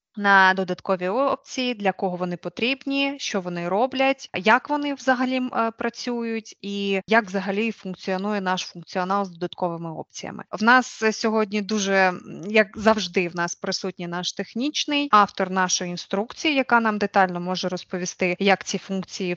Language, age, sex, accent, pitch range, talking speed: Ukrainian, 20-39, female, native, 185-225 Hz, 140 wpm